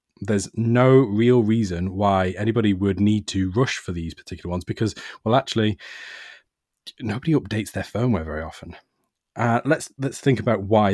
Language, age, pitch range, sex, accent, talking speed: English, 20-39, 95-115 Hz, male, British, 160 wpm